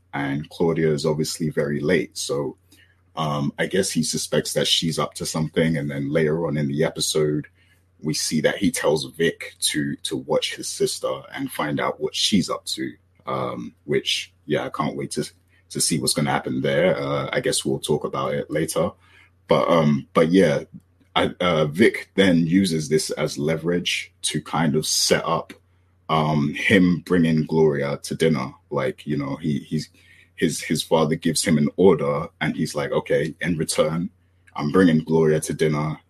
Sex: male